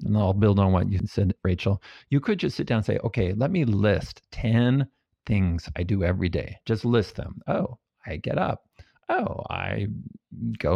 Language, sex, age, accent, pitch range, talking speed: English, male, 50-69, American, 95-120 Hz, 195 wpm